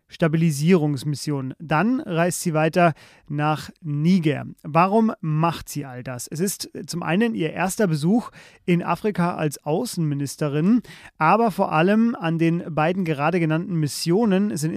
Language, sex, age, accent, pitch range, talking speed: German, male, 30-49, German, 155-190 Hz, 135 wpm